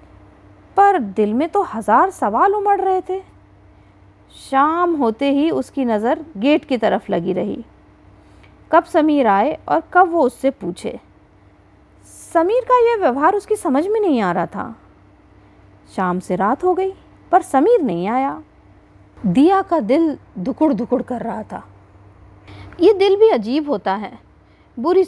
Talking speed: 150 wpm